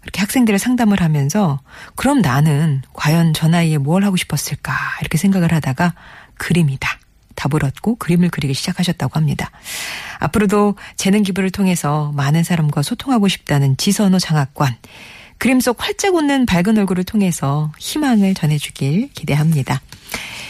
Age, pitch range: 40-59, 150-215 Hz